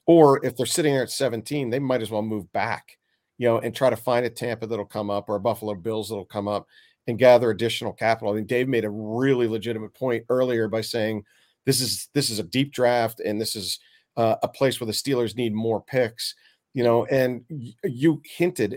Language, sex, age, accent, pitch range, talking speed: English, male, 40-59, American, 110-130 Hz, 225 wpm